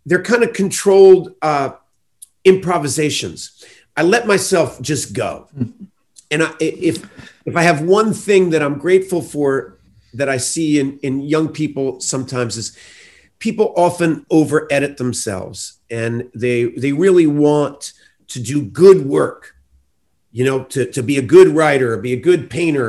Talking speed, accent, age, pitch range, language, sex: 150 wpm, American, 50-69, 125-180 Hz, English, male